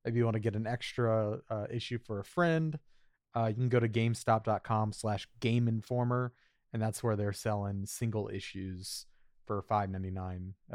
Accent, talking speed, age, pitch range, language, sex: American, 160 wpm, 30-49, 110-145 Hz, English, male